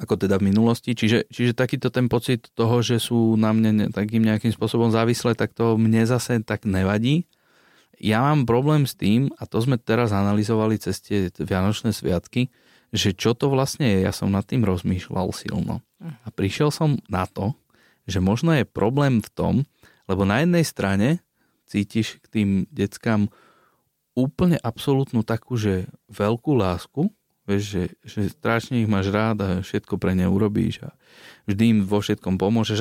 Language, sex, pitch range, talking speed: Slovak, male, 100-125 Hz, 170 wpm